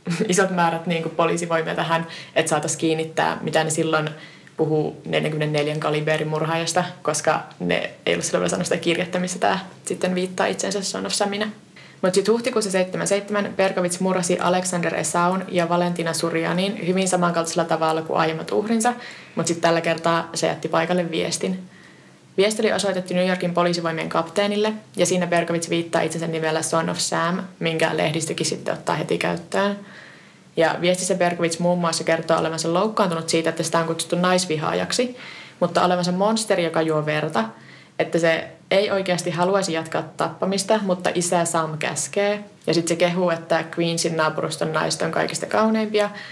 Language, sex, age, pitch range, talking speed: Finnish, female, 20-39, 160-185 Hz, 150 wpm